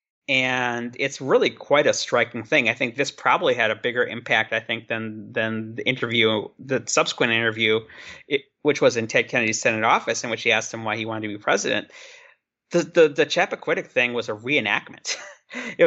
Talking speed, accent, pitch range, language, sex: 195 wpm, American, 110-150 Hz, English, male